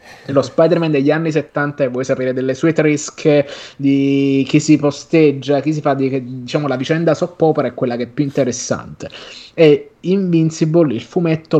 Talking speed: 180 wpm